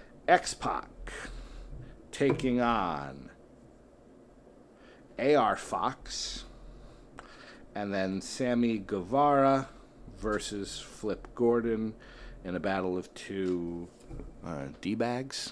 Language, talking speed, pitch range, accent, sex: English, 75 wpm, 105-130 Hz, American, male